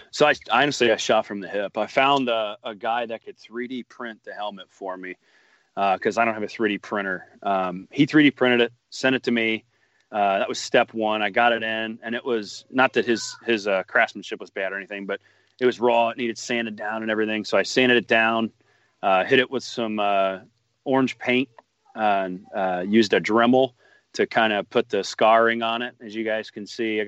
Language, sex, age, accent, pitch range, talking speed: English, male, 30-49, American, 105-120 Hz, 230 wpm